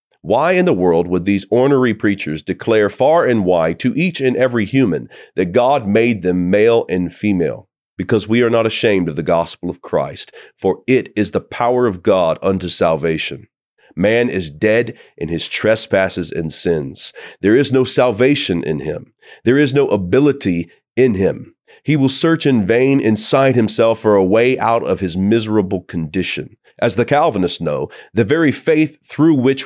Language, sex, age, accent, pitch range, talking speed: English, male, 40-59, American, 95-130 Hz, 175 wpm